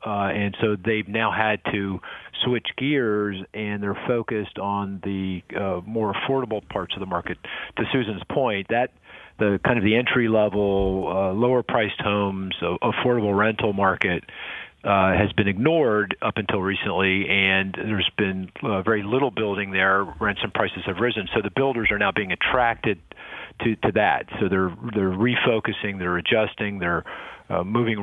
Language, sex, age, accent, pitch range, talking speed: English, male, 40-59, American, 95-110 Hz, 185 wpm